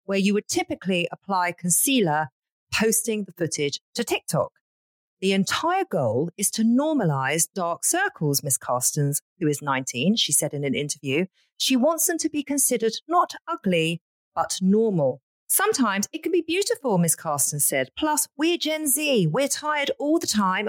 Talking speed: 160 wpm